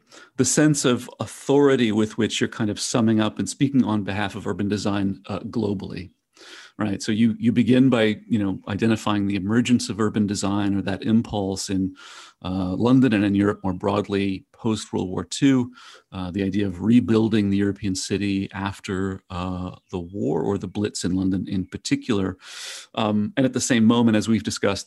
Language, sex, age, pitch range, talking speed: English, male, 40-59, 100-115 Hz, 185 wpm